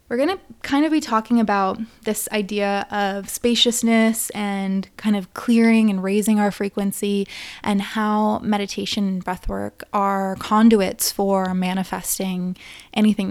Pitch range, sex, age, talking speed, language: 190-215 Hz, female, 20-39, 135 wpm, English